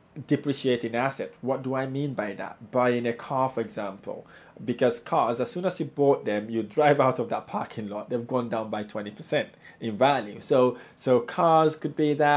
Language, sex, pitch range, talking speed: English, male, 125-155 Hz, 200 wpm